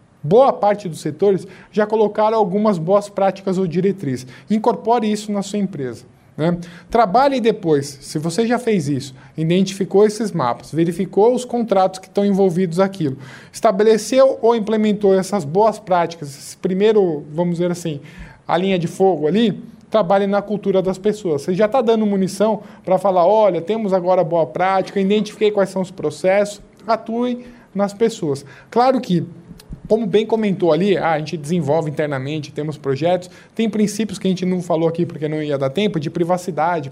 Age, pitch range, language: 20-39, 170-215 Hz, Portuguese